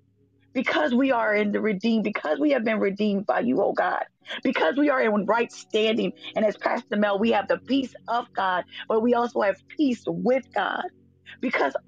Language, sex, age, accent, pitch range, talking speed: English, female, 30-49, American, 190-245 Hz, 195 wpm